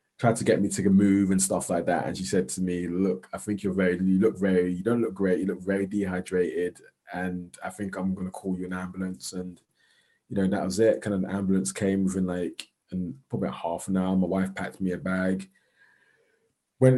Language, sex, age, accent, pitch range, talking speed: English, male, 20-39, British, 90-105 Hz, 240 wpm